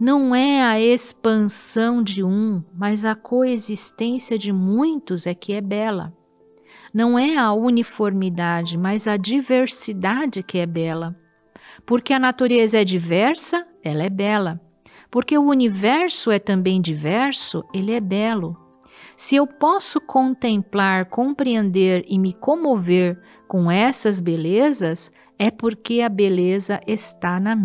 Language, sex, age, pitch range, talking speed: Portuguese, female, 50-69, 180-245 Hz, 130 wpm